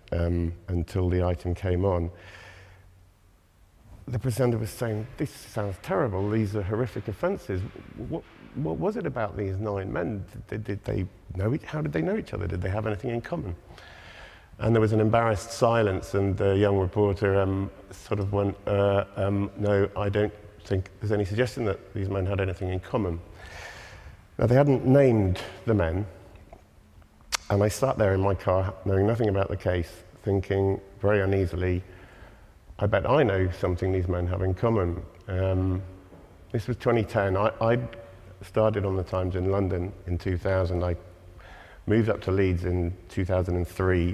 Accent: British